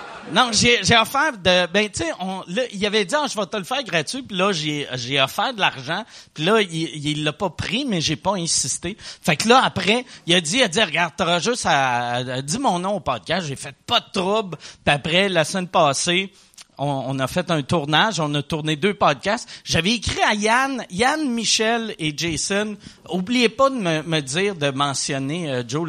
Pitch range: 145-205 Hz